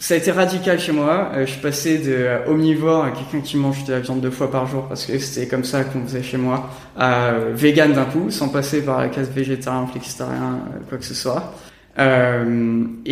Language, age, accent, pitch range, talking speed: French, 20-39, French, 130-160 Hz, 225 wpm